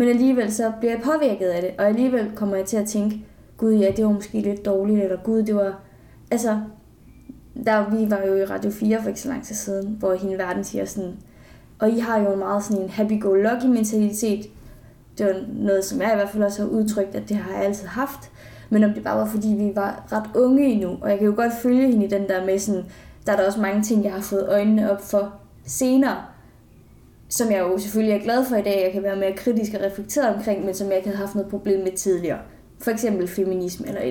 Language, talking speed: Danish, 245 wpm